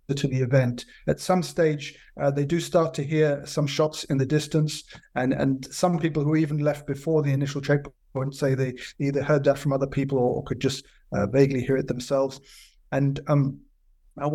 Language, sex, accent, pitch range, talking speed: English, male, British, 135-160 Hz, 190 wpm